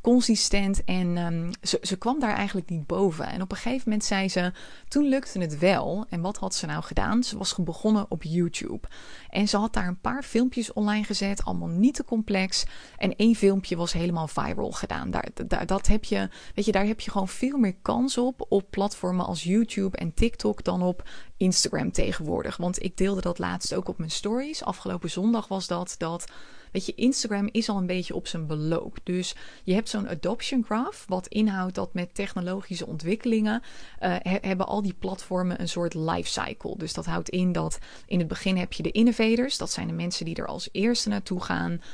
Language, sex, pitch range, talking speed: Dutch, female, 175-215 Hz, 205 wpm